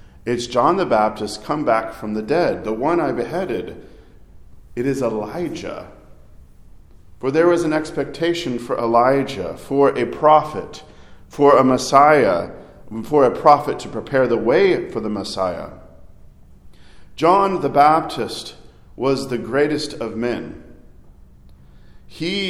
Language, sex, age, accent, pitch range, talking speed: English, male, 40-59, American, 105-145 Hz, 130 wpm